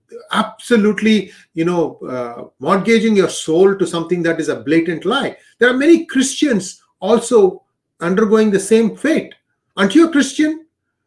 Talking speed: 145 wpm